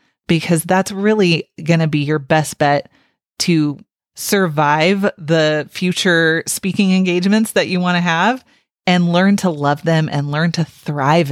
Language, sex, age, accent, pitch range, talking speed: English, female, 30-49, American, 160-200 Hz, 155 wpm